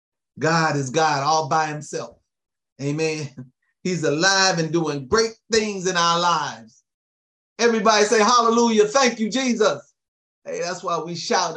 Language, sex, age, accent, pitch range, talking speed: English, male, 30-49, American, 125-185 Hz, 140 wpm